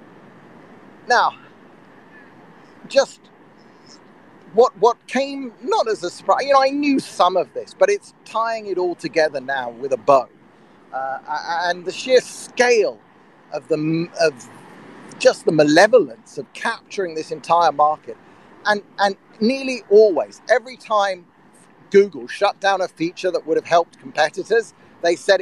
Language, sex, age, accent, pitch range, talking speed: English, male, 40-59, British, 170-245 Hz, 140 wpm